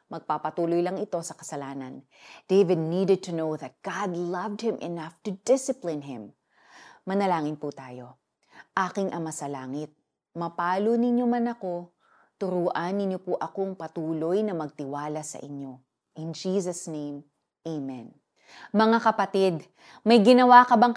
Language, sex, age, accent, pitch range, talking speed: Filipino, female, 30-49, native, 160-210 Hz, 135 wpm